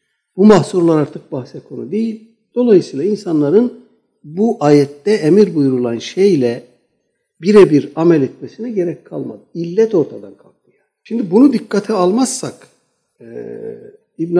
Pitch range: 145-220 Hz